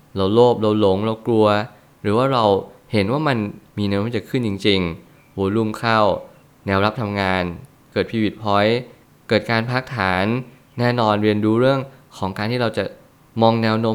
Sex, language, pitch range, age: male, Thai, 105-125 Hz, 20-39